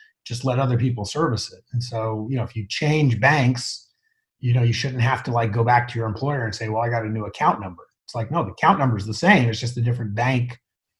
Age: 30-49